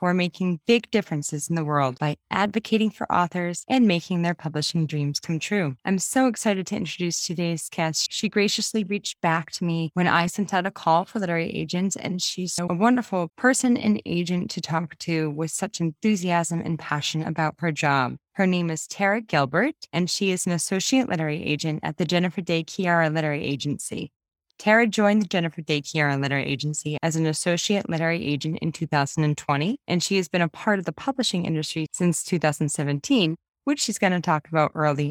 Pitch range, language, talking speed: 155-195 Hz, English, 190 wpm